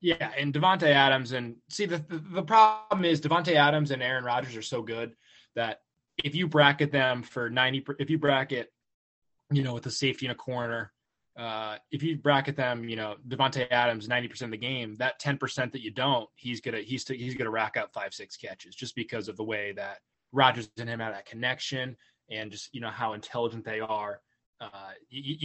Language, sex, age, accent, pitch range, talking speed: English, male, 20-39, American, 110-140 Hz, 205 wpm